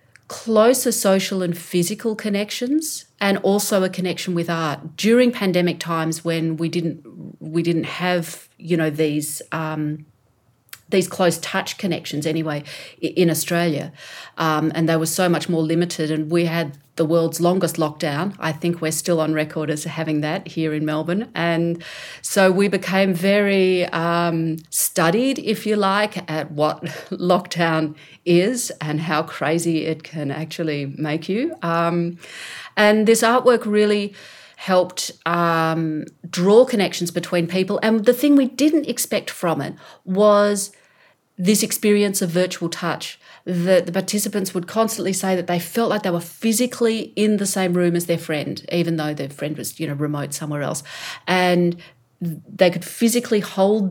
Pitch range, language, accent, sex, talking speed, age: 160-195 Hz, English, Australian, female, 155 wpm, 40-59